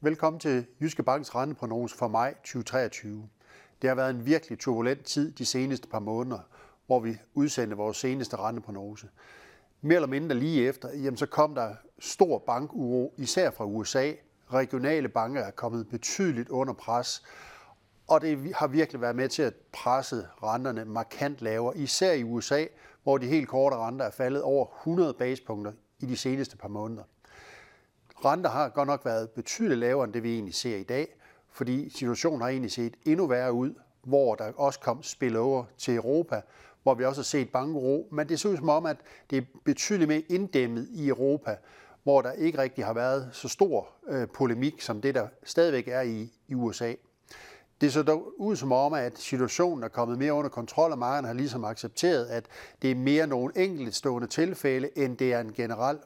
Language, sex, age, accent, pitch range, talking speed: Danish, male, 60-79, native, 120-145 Hz, 185 wpm